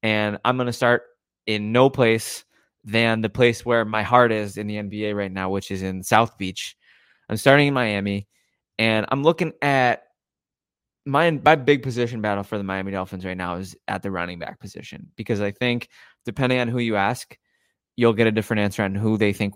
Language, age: English, 20-39